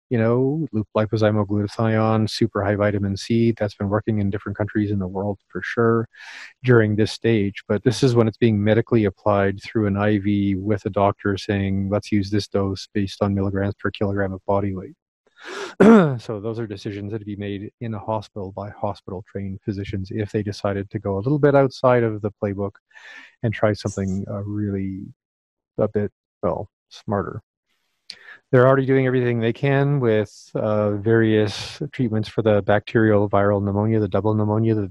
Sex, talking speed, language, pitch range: male, 175 wpm, English, 100-115 Hz